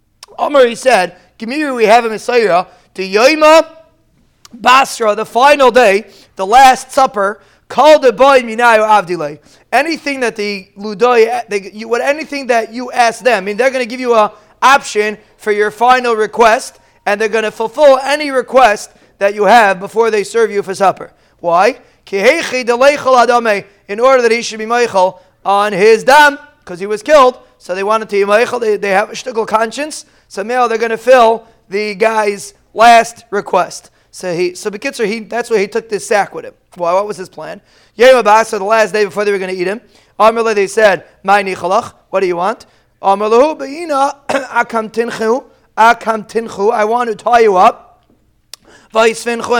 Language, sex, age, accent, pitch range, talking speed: English, male, 30-49, American, 205-255 Hz, 165 wpm